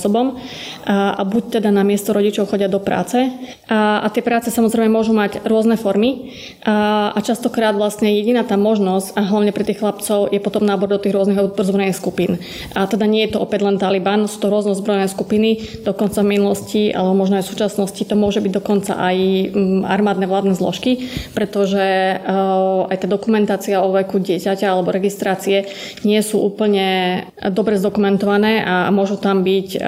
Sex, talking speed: female, 170 wpm